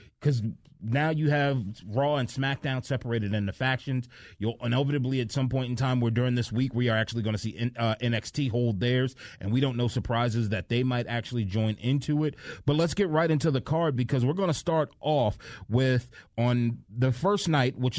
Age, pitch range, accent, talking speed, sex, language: 30-49, 110-140 Hz, American, 215 wpm, male, English